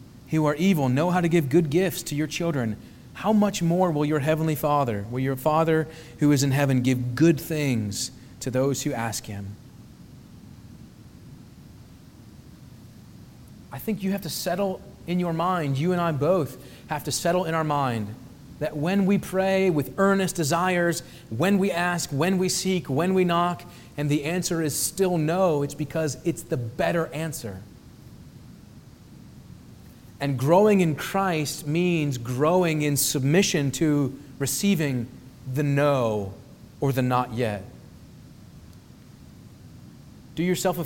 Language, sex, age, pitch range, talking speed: English, male, 30-49, 130-175 Hz, 145 wpm